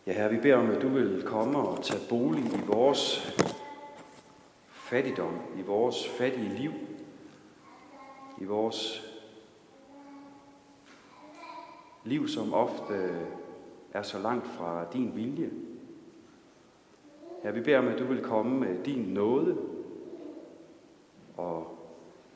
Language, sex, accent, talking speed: Danish, male, native, 115 wpm